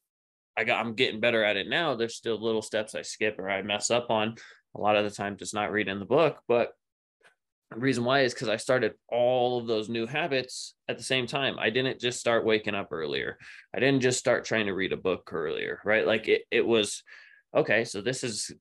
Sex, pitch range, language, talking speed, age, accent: male, 105-125 Hz, English, 235 wpm, 20-39, American